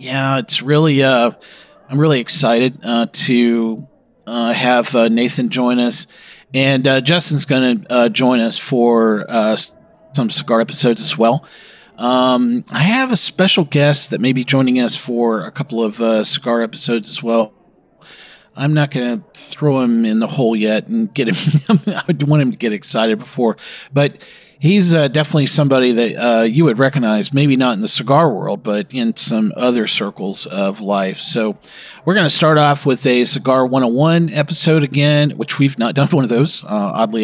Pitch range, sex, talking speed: 120-155 Hz, male, 180 wpm